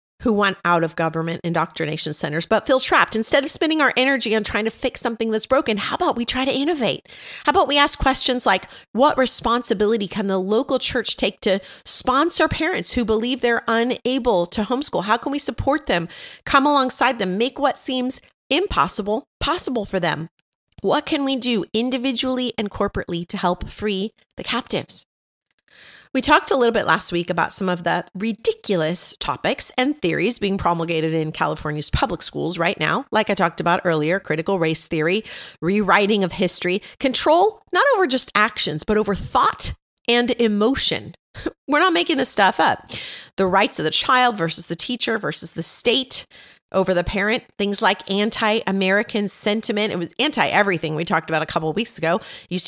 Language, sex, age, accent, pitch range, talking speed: English, female, 30-49, American, 180-255 Hz, 180 wpm